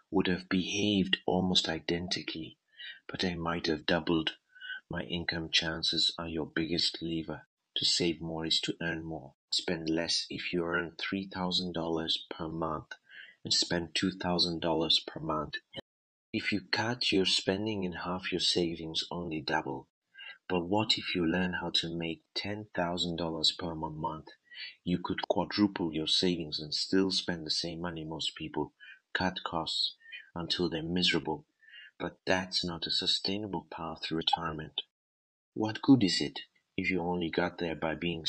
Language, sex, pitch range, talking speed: English, male, 80-95 Hz, 150 wpm